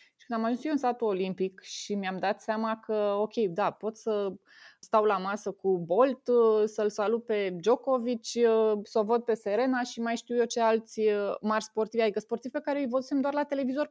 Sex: female